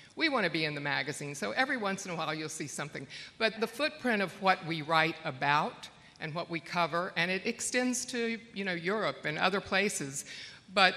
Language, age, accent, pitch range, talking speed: English, 60-79, American, 165-200 Hz, 215 wpm